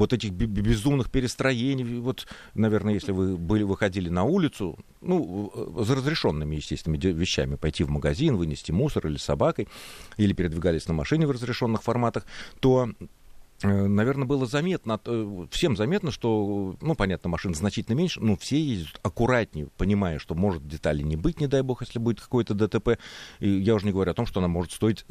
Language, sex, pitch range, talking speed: Russian, male, 90-130 Hz, 165 wpm